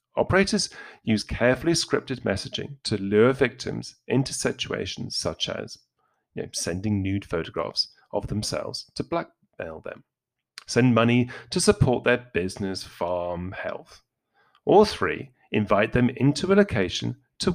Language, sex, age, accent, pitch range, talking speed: English, male, 40-59, British, 105-145 Hz, 125 wpm